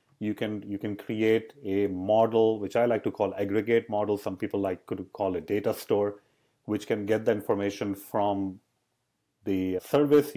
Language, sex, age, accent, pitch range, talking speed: English, male, 40-59, Indian, 105-125 Hz, 175 wpm